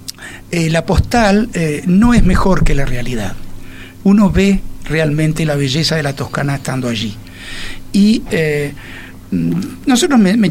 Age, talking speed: 60-79, 145 wpm